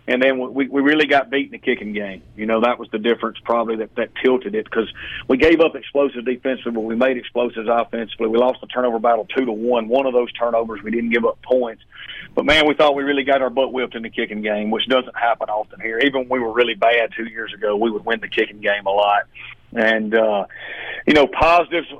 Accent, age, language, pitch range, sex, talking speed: American, 40-59, English, 115-140 Hz, male, 245 wpm